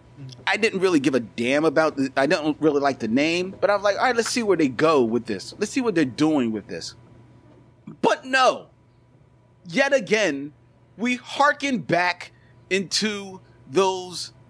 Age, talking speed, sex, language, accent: 40-59, 175 wpm, male, English, American